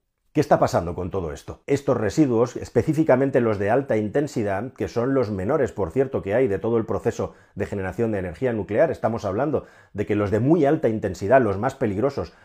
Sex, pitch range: male, 100-140 Hz